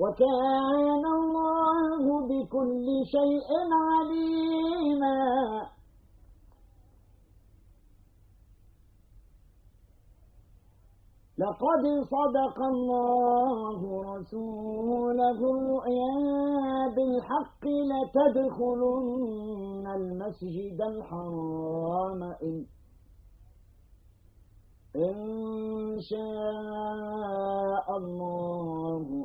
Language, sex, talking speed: Arabic, male, 35 wpm